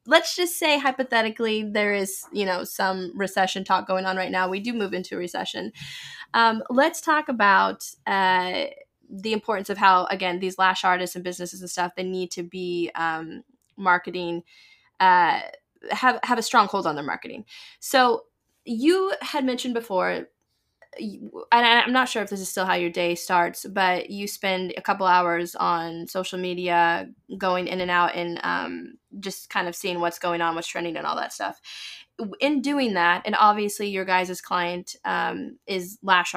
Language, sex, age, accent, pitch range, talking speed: English, female, 10-29, American, 180-230 Hz, 180 wpm